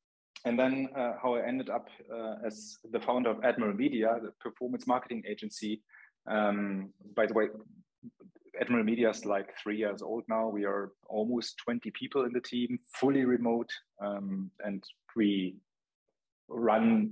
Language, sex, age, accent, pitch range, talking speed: English, male, 30-49, German, 100-120 Hz, 155 wpm